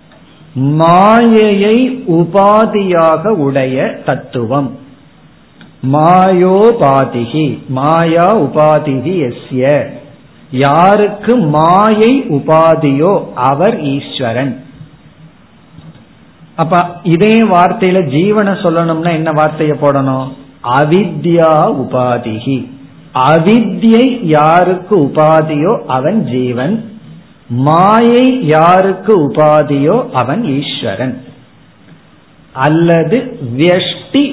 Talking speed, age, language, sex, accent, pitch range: 60 wpm, 50-69, Tamil, male, native, 140-195 Hz